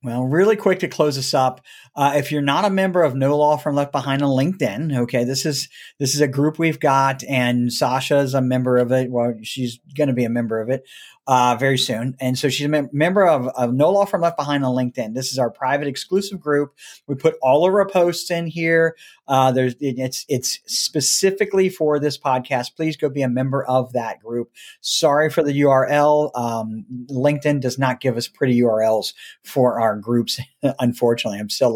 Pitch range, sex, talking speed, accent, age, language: 130-160 Hz, male, 210 wpm, American, 40-59, English